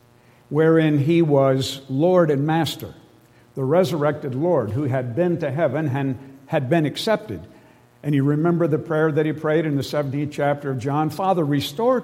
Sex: male